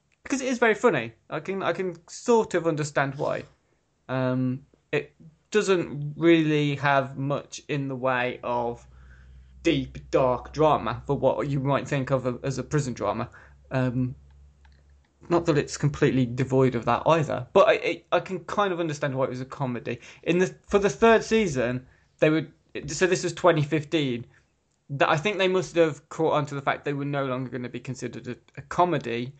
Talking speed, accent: 190 wpm, British